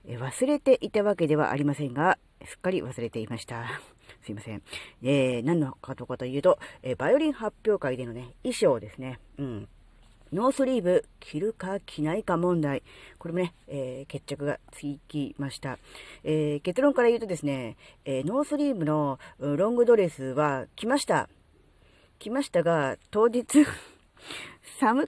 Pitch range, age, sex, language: 135-200 Hz, 40-59, female, Japanese